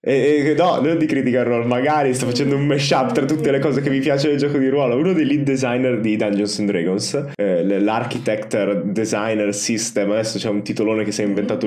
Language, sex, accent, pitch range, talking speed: Italian, male, native, 105-130 Hz, 215 wpm